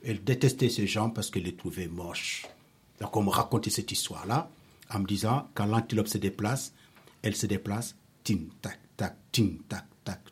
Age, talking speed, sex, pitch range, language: 60-79, 185 wpm, male, 110-145 Hz, French